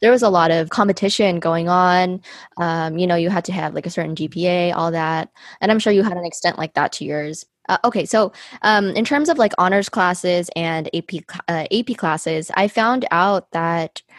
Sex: female